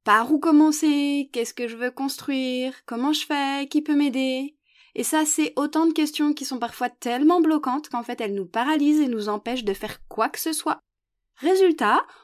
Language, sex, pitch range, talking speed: French, female, 225-315 Hz, 195 wpm